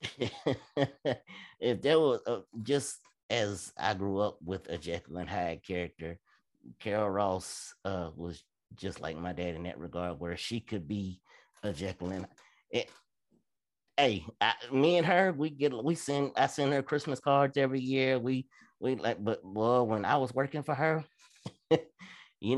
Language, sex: English, male